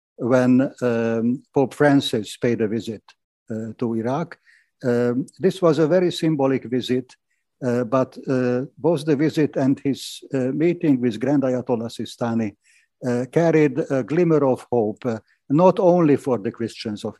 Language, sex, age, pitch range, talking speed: English, male, 60-79, 120-145 Hz, 155 wpm